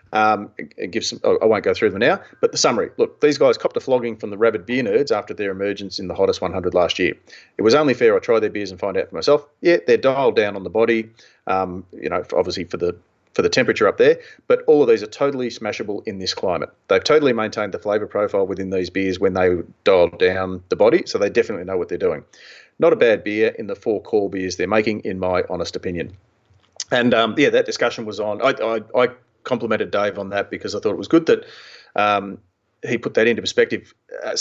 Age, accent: 30-49, Australian